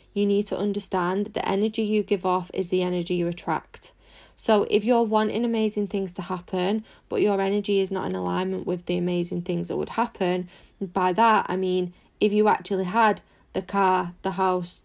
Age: 20-39